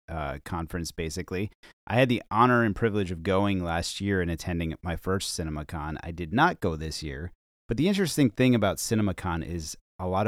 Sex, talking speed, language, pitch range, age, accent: male, 195 wpm, English, 85-110 Hz, 30-49, American